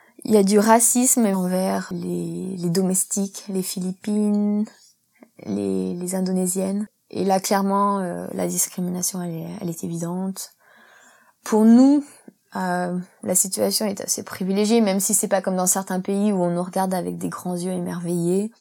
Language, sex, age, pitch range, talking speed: English, female, 20-39, 185-220 Hz, 160 wpm